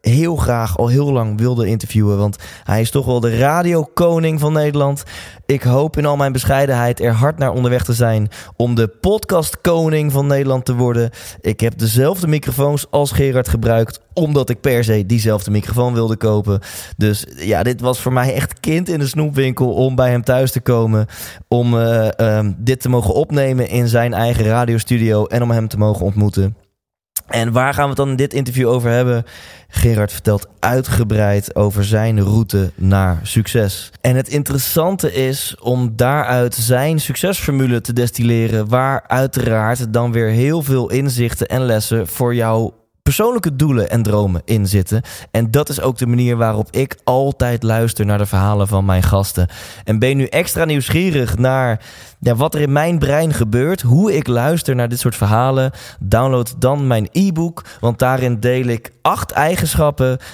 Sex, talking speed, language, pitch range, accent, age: male, 175 wpm, Dutch, 110-135 Hz, Dutch, 20-39